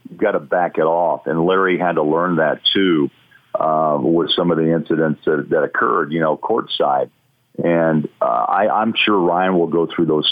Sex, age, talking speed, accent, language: male, 50-69, 205 wpm, American, English